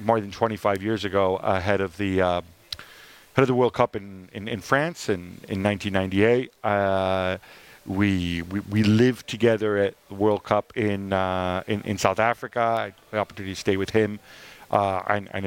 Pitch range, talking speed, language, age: 100-120 Hz, 210 wpm, English, 40-59